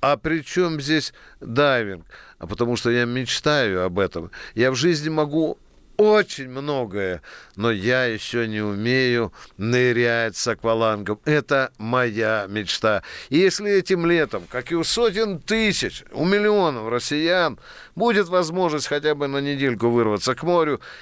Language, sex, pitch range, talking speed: Russian, male, 115-155 Hz, 145 wpm